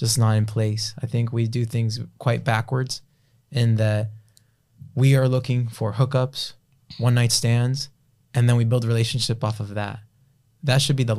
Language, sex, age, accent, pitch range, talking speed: English, male, 20-39, American, 110-130 Hz, 175 wpm